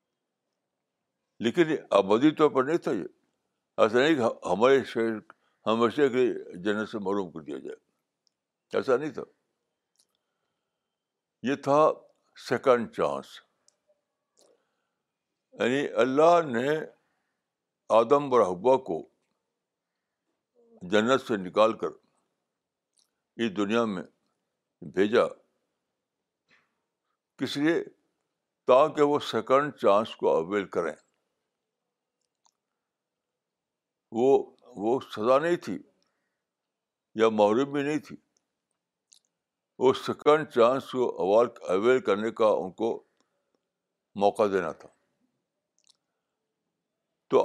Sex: male